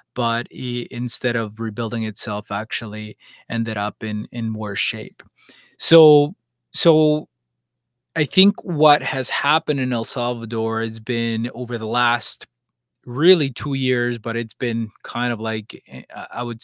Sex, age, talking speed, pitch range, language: male, 20-39, 135 wpm, 115-130 Hz, English